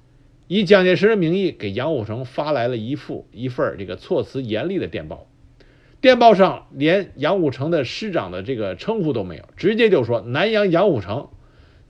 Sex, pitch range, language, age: male, 110-180 Hz, Chinese, 50-69